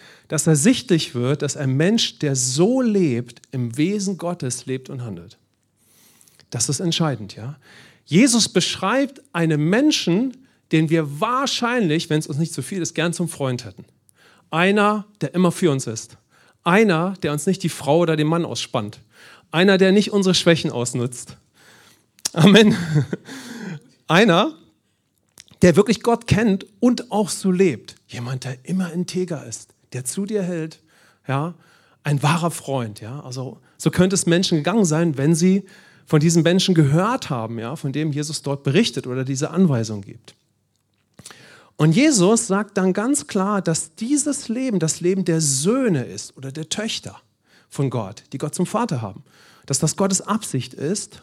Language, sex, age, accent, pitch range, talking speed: English, male, 40-59, German, 135-195 Hz, 160 wpm